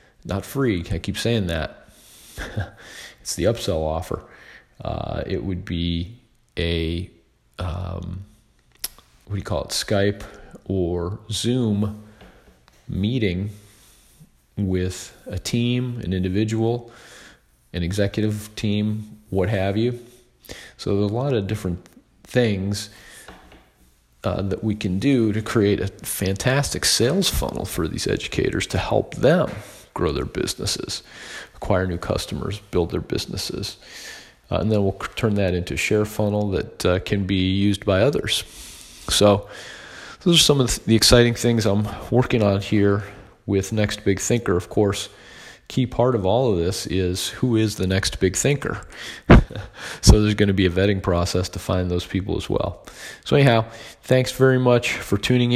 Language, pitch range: English, 95-115 Hz